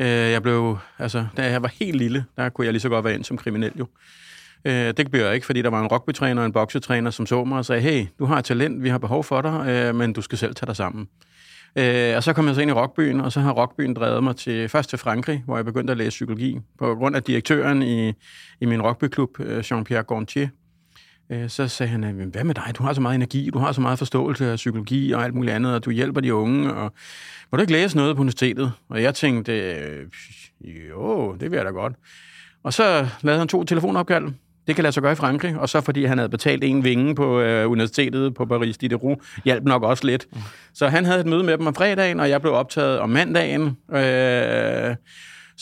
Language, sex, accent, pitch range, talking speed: Danish, male, native, 120-140 Hz, 235 wpm